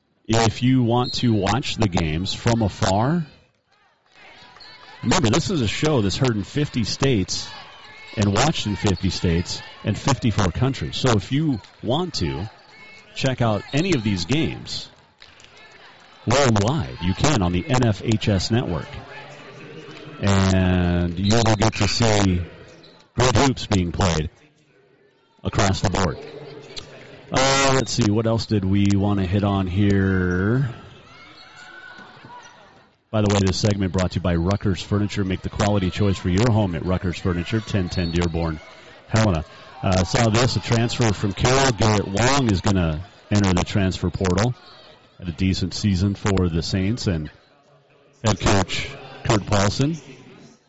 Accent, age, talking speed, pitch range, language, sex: American, 40-59, 145 wpm, 95-120 Hz, English, male